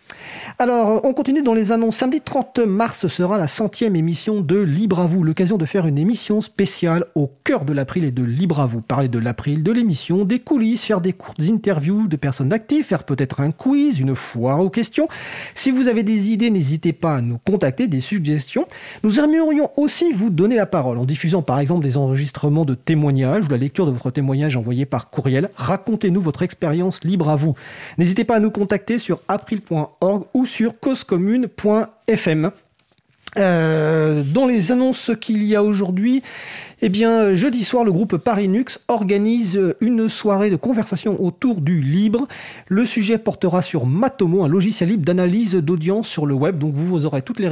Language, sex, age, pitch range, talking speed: French, male, 40-59, 155-225 Hz, 190 wpm